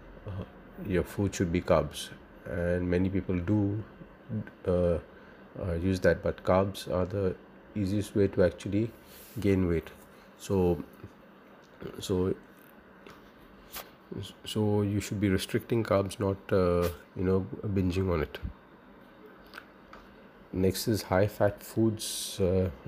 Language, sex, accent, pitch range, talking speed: English, male, Indian, 90-105 Hz, 115 wpm